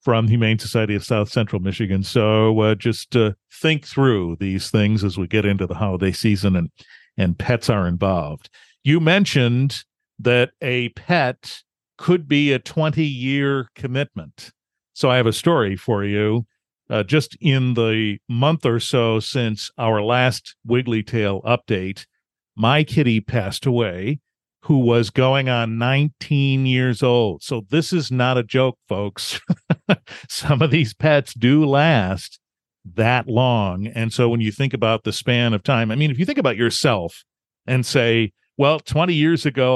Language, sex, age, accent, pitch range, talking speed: English, male, 50-69, American, 110-135 Hz, 160 wpm